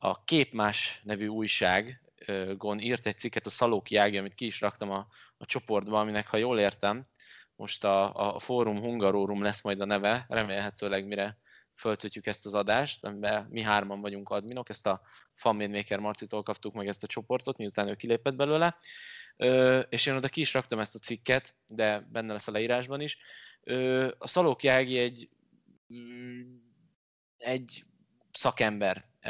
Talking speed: 155 wpm